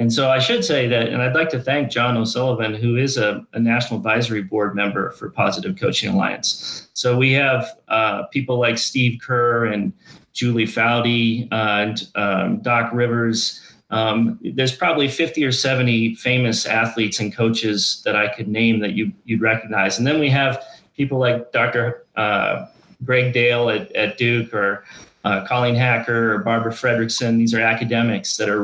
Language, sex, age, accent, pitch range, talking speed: English, male, 30-49, American, 115-130 Hz, 175 wpm